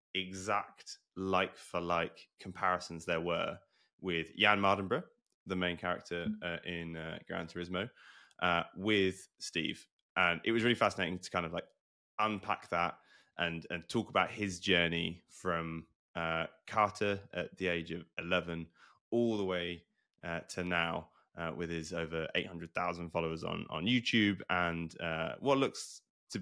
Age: 20-39